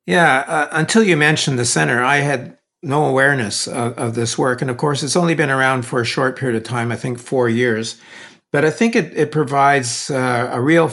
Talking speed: 215 wpm